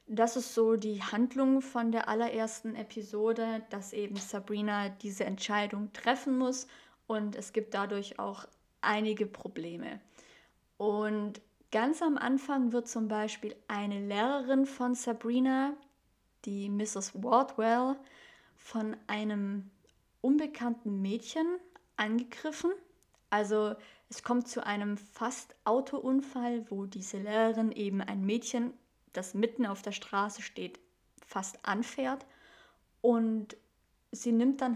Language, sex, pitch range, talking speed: German, female, 210-245 Hz, 115 wpm